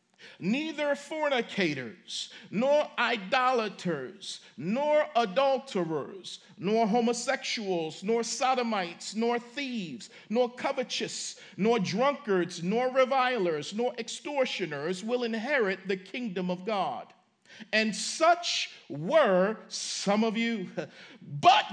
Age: 50-69